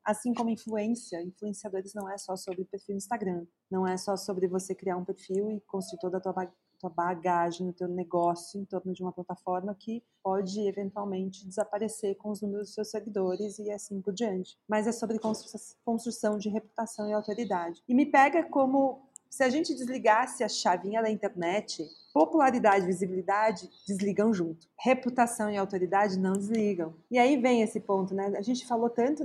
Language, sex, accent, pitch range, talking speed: Portuguese, female, Brazilian, 185-220 Hz, 175 wpm